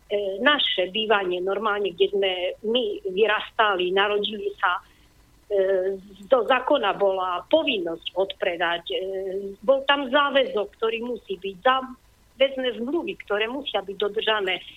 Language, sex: Slovak, female